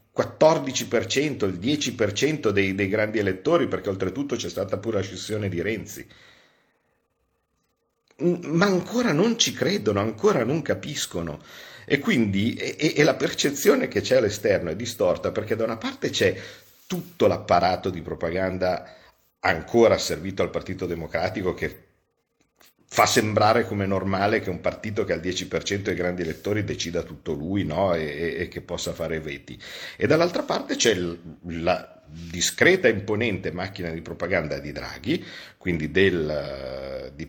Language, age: Italian, 50-69